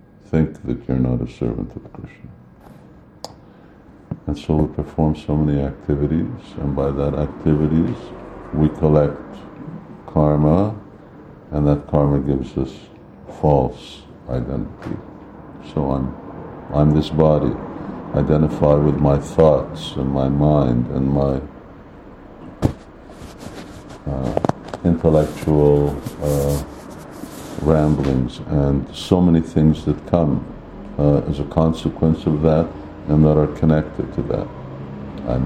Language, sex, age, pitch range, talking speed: English, male, 60-79, 70-80 Hz, 115 wpm